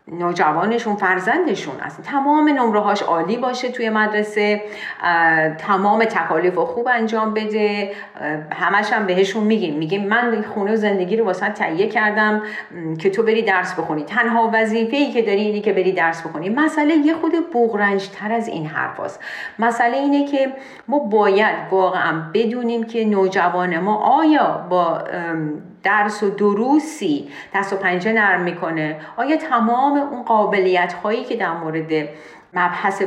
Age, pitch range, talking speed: 40-59, 175-230 Hz, 140 wpm